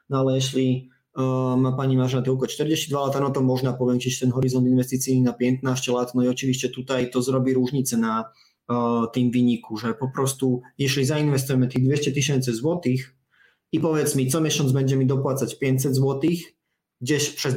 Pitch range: 125-140 Hz